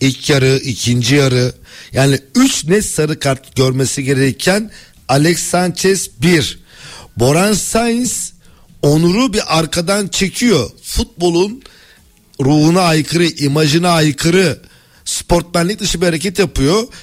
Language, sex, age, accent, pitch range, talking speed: Turkish, male, 50-69, native, 140-195 Hz, 105 wpm